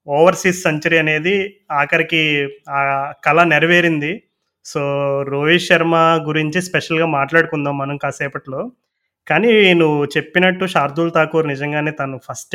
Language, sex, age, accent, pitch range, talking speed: Telugu, male, 20-39, native, 145-170 Hz, 110 wpm